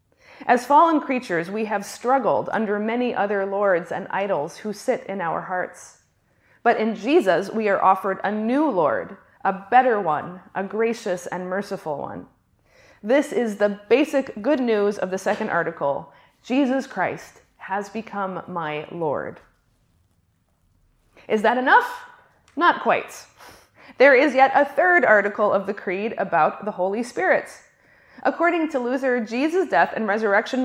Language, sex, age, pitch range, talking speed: English, female, 20-39, 195-265 Hz, 145 wpm